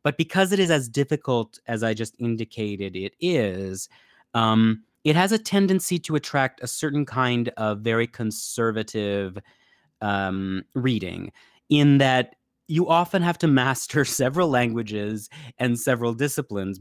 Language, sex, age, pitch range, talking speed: English, male, 30-49, 110-145 Hz, 140 wpm